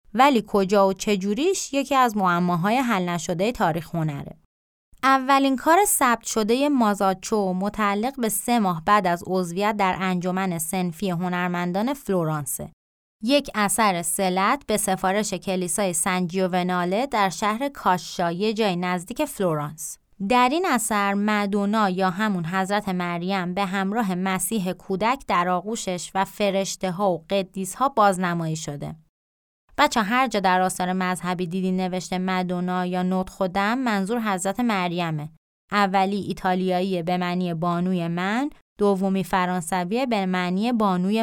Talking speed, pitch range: 130 wpm, 185-225 Hz